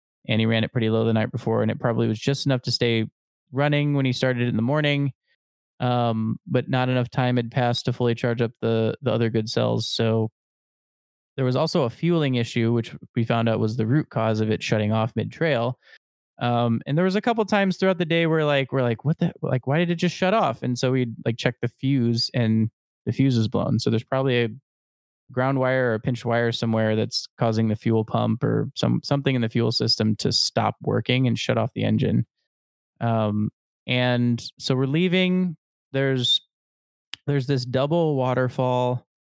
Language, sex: English, male